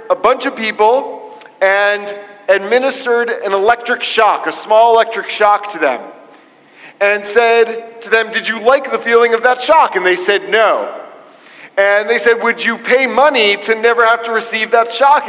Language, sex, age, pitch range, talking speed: English, male, 40-59, 205-240 Hz, 175 wpm